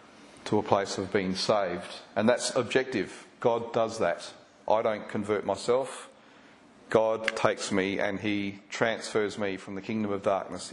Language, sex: English, male